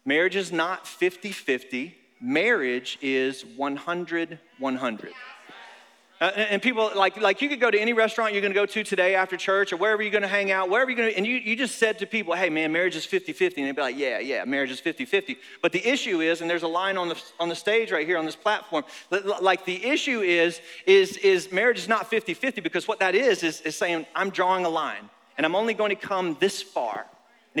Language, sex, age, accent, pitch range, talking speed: English, male, 30-49, American, 160-210 Hz, 215 wpm